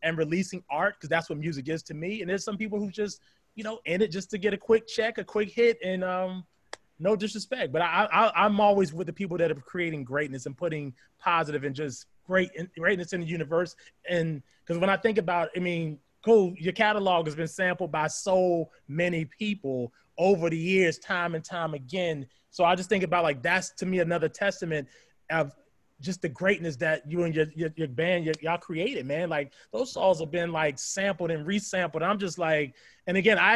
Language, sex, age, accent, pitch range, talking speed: English, male, 20-39, American, 165-215 Hz, 215 wpm